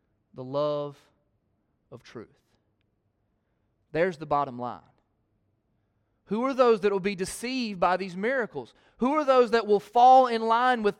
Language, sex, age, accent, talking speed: English, male, 30-49, American, 145 wpm